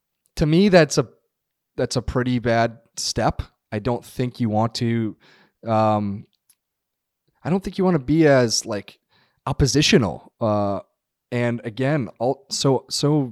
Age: 30-49